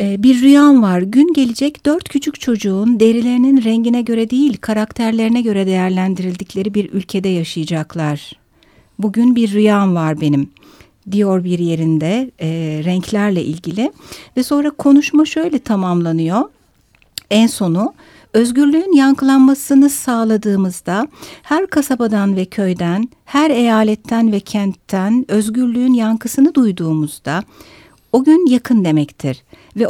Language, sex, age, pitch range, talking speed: Turkish, female, 60-79, 185-265 Hz, 110 wpm